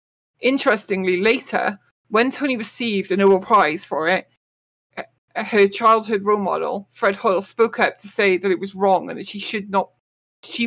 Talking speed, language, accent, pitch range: 170 wpm, English, British, 190-220 Hz